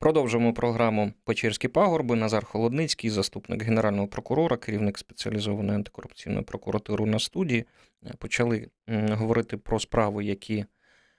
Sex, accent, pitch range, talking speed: male, native, 105-120 Hz, 105 wpm